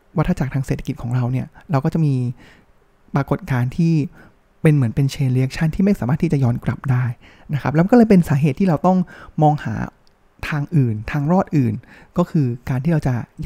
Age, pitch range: 20-39, 135-170 Hz